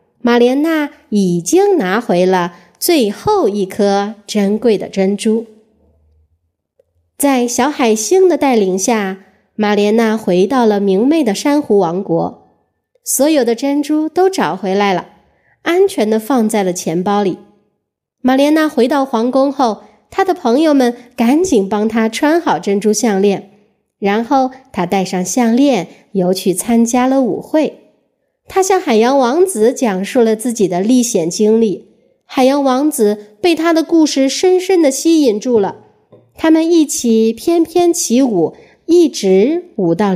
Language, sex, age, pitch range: Chinese, female, 20-39, 195-280 Hz